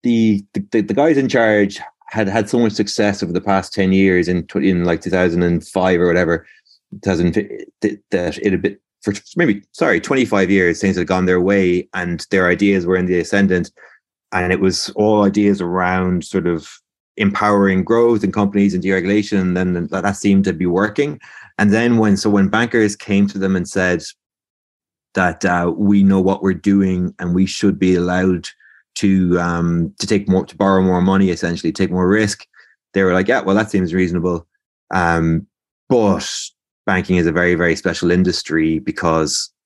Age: 30-49